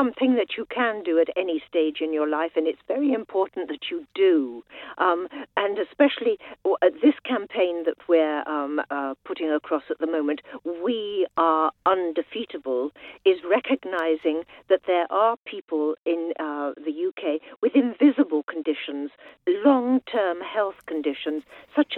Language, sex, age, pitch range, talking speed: English, female, 50-69, 160-255 Hz, 140 wpm